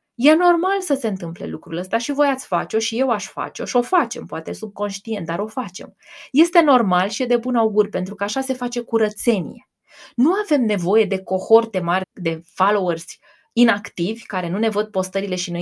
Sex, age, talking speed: female, 20-39, 200 wpm